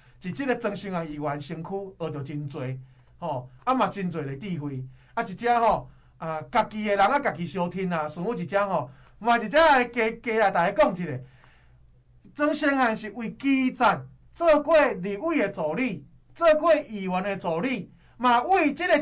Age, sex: 20-39, male